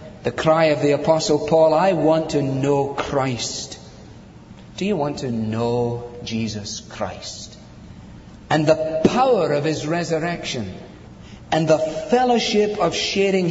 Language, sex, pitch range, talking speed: English, male, 125-170 Hz, 130 wpm